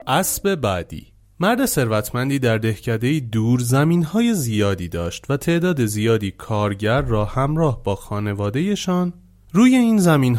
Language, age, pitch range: Persian, 30-49, 105-160 Hz